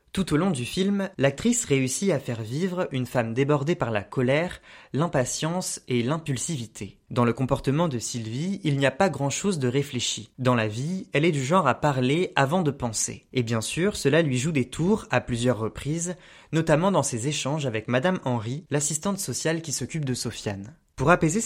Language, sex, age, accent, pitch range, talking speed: French, male, 20-39, French, 125-170 Hz, 195 wpm